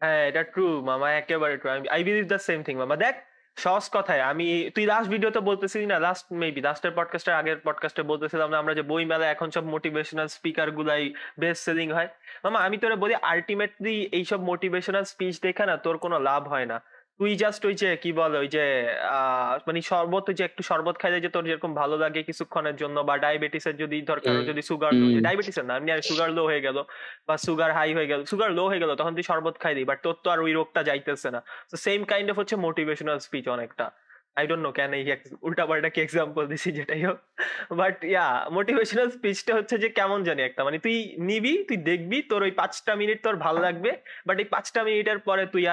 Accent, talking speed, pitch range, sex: native, 145 wpm, 150-200 Hz, male